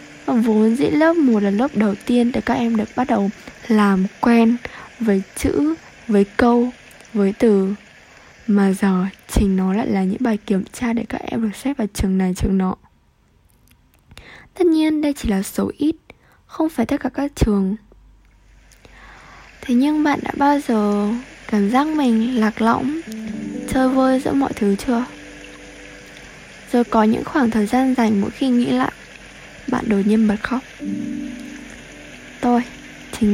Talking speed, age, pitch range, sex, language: 160 wpm, 10-29, 205-255 Hz, female, Vietnamese